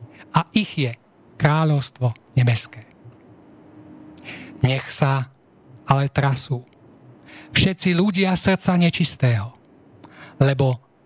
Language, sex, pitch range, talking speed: Slovak, male, 135-170 Hz, 75 wpm